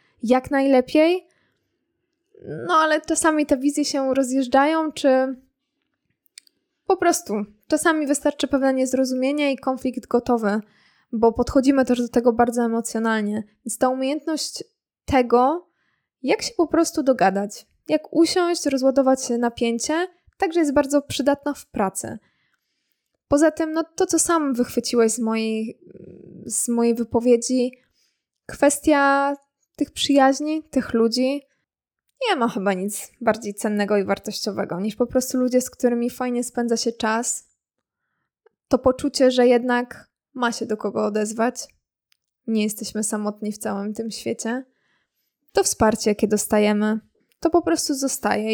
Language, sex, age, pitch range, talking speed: Polish, female, 20-39, 230-295 Hz, 130 wpm